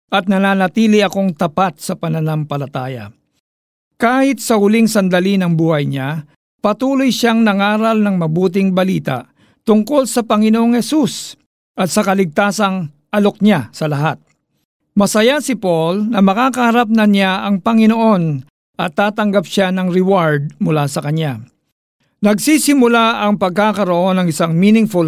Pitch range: 165-215 Hz